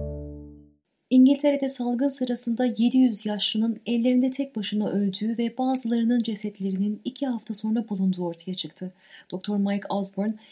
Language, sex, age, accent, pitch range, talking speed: Turkish, female, 30-49, native, 190-255 Hz, 120 wpm